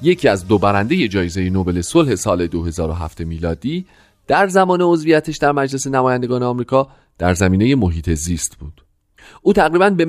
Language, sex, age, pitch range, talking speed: Persian, male, 40-59, 95-150 Hz, 155 wpm